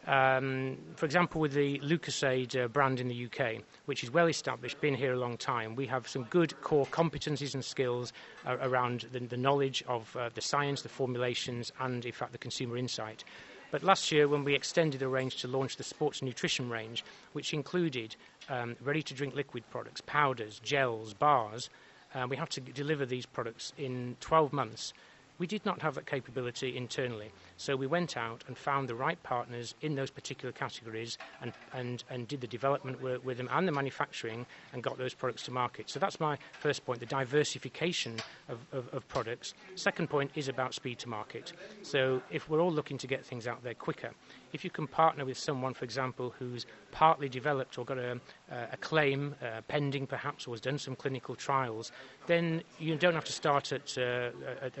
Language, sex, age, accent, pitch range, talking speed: English, male, 30-49, British, 125-145 Hz, 195 wpm